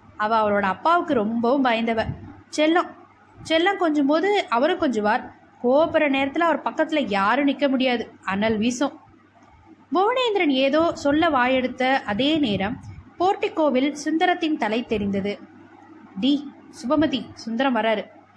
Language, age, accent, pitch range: Tamil, 20-39, native, 235-320 Hz